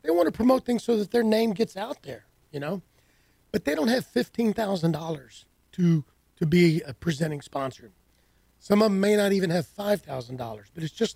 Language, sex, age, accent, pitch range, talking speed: English, male, 40-59, American, 150-205 Hz, 195 wpm